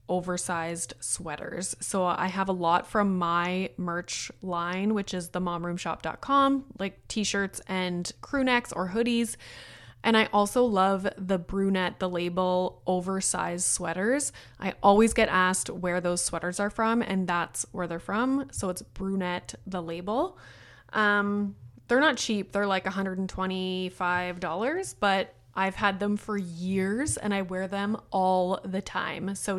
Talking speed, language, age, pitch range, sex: 145 wpm, English, 20-39, 180-225 Hz, female